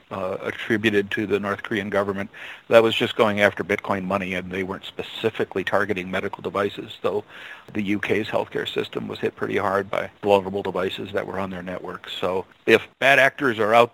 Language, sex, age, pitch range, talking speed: English, male, 50-69, 100-115 Hz, 200 wpm